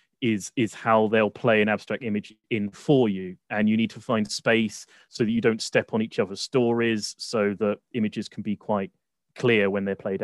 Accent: British